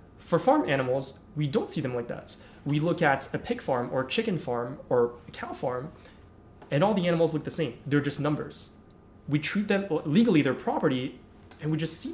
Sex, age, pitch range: male, 20-39, 130-175 Hz